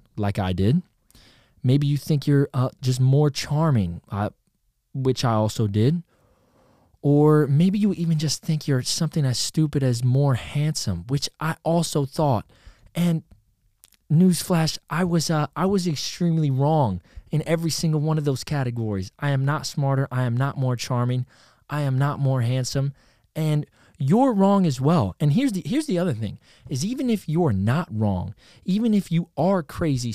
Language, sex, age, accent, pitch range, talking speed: English, male, 20-39, American, 110-145 Hz, 170 wpm